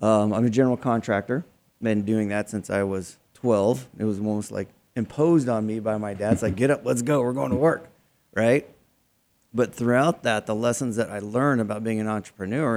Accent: American